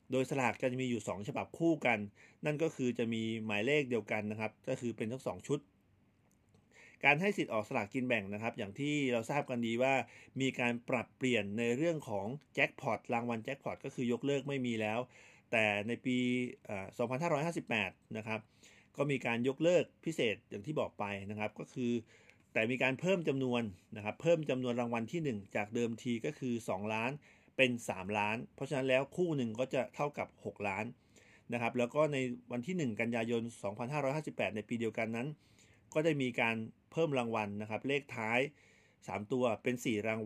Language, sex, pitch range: Thai, male, 110-130 Hz